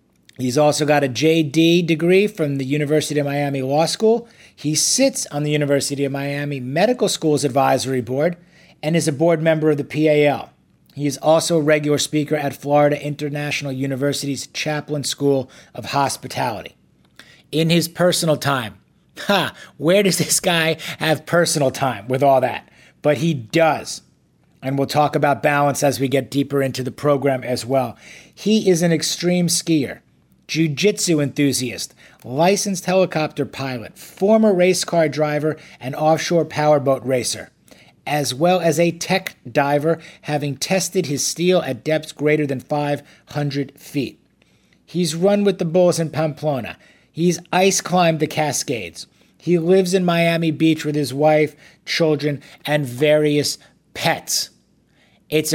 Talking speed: 145 wpm